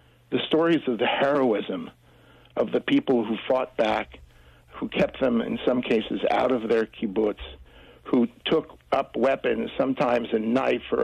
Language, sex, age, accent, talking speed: English, male, 60-79, American, 160 wpm